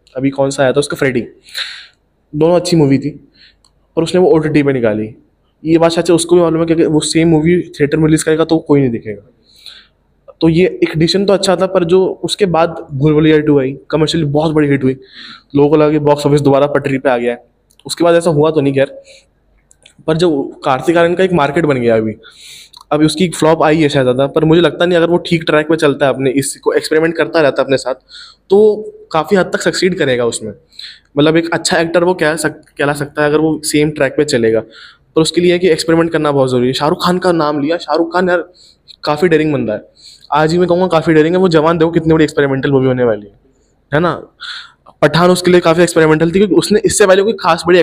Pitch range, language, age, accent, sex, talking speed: 140-170 Hz, Hindi, 20-39, native, male, 230 wpm